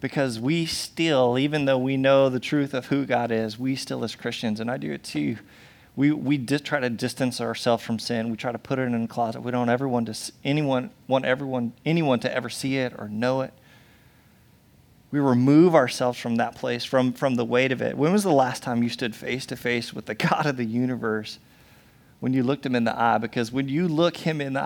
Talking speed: 235 wpm